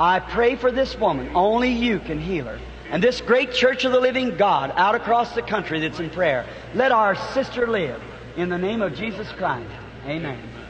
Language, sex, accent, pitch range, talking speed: English, male, American, 160-230 Hz, 200 wpm